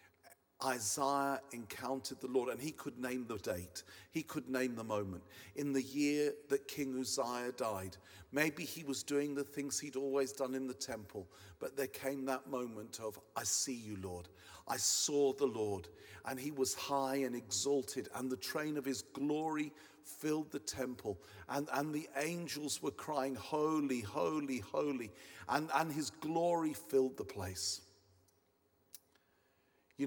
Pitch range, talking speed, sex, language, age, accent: 130-155 Hz, 160 wpm, male, English, 50-69, British